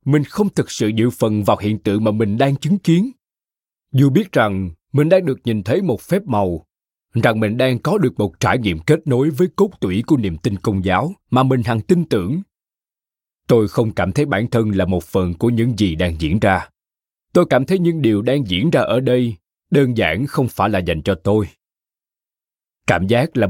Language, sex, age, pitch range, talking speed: Vietnamese, male, 20-39, 100-145 Hz, 215 wpm